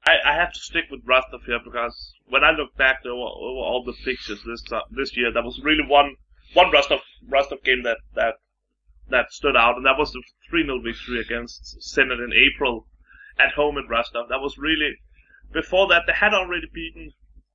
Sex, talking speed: male, 200 wpm